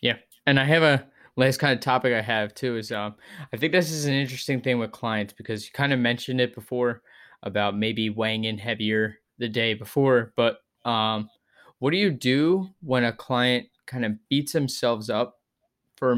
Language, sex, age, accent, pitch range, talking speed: English, male, 20-39, American, 115-140 Hz, 195 wpm